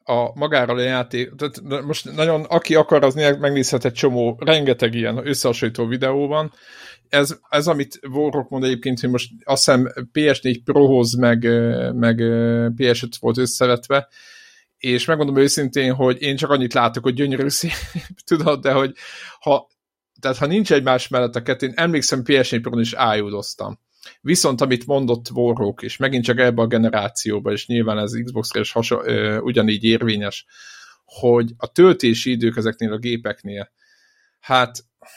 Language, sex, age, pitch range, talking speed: Hungarian, male, 50-69, 115-140 Hz, 150 wpm